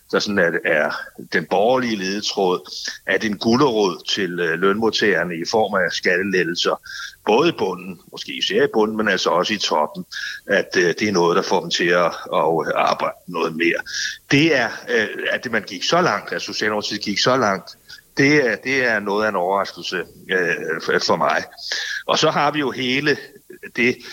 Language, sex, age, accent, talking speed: Danish, male, 60-79, native, 170 wpm